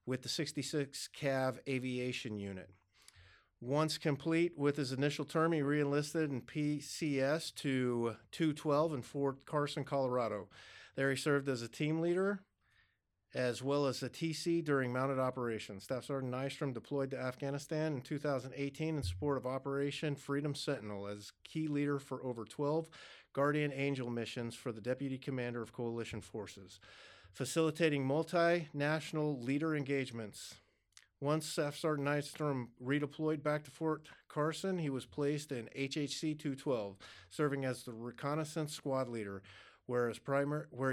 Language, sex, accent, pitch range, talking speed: English, male, American, 120-150 Hz, 135 wpm